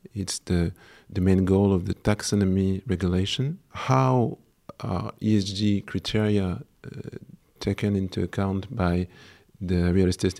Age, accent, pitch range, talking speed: 50-69, French, 95-110 Hz, 120 wpm